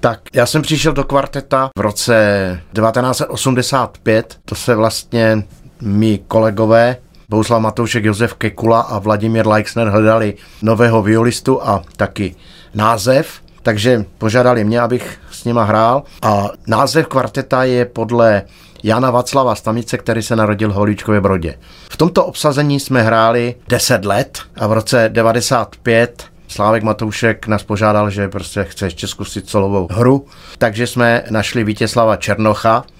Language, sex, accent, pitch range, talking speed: Czech, male, native, 105-125 Hz, 135 wpm